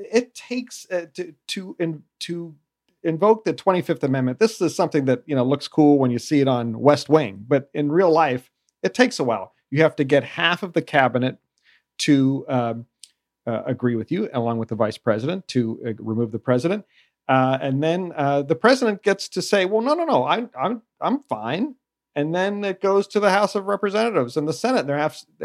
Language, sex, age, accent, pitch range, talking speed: English, male, 40-59, American, 135-170 Hz, 205 wpm